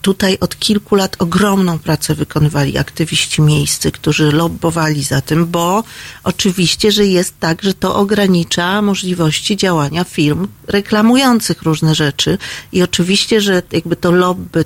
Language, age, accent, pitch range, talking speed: Polish, 40-59, native, 160-195 Hz, 135 wpm